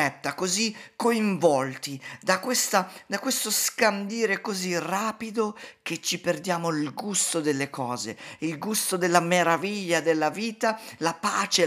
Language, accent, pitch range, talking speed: Italian, native, 135-195 Hz, 120 wpm